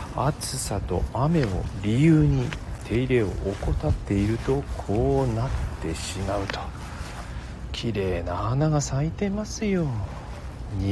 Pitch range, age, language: 95-135 Hz, 40-59, Japanese